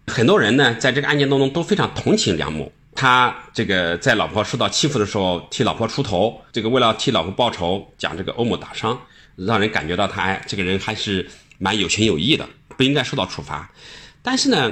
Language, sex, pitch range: Chinese, male, 90-140 Hz